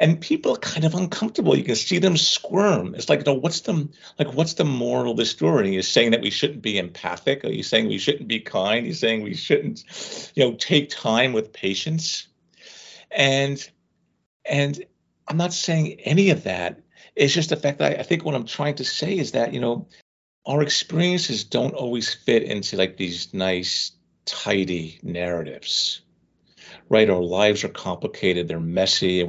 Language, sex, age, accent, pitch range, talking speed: English, male, 50-69, American, 100-150 Hz, 185 wpm